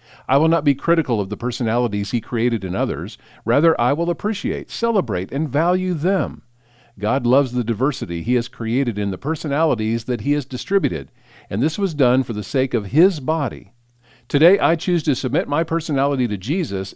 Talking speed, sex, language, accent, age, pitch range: 190 wpm, male, English, American, 50-69, 110-160 Hz